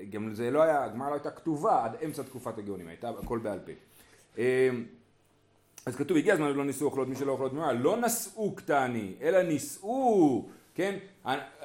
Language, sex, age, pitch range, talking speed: Hebrew, male, 40-59, 145-210 Hz, 165 wpm